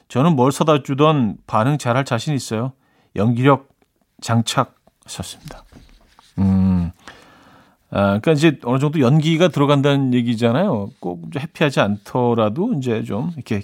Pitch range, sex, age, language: 110-155 Hz, male, 40-59, Korean